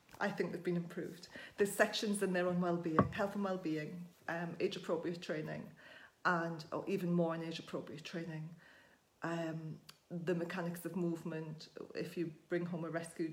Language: English